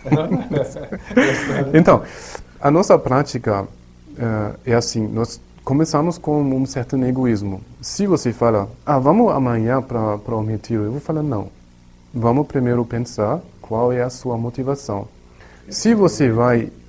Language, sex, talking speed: Portuguese, male, 135 wpm